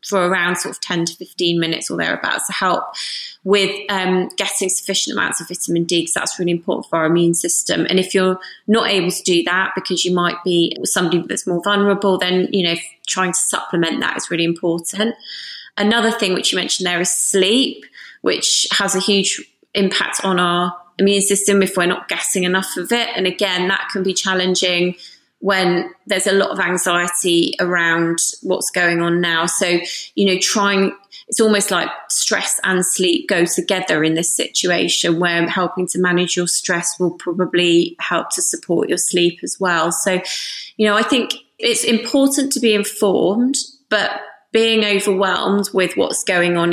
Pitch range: 175-200 Hz